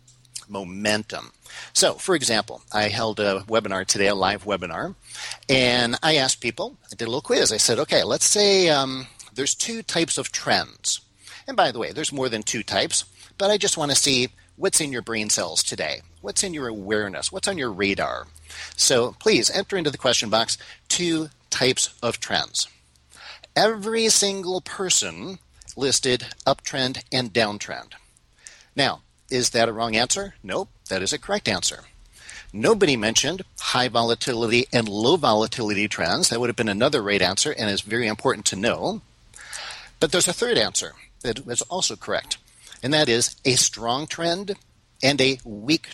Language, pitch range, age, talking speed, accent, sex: English, 105-145 Hz, 50-69, 170 wpm, American, male